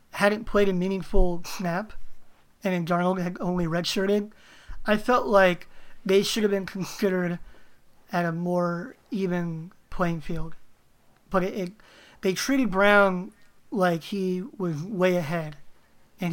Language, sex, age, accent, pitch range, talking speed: English, male, 30-49, American, 170-195 Hz, 135 wpm